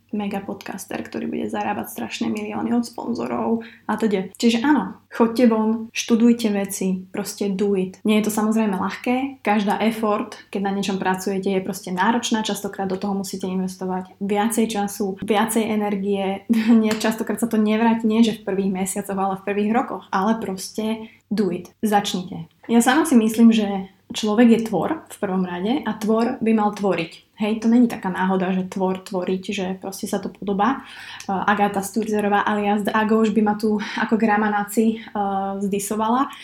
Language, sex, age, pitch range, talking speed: Slovak, female, 20-39, 195-230 Hz, 165 wpm